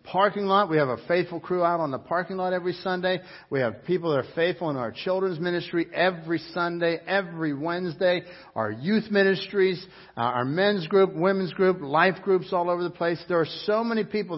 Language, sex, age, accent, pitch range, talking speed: English, male, 60-79, American, 150-195 Hz, 195 wpm